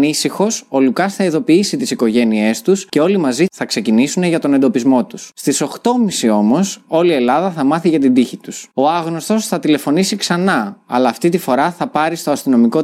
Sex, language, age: male, Greek, 20-39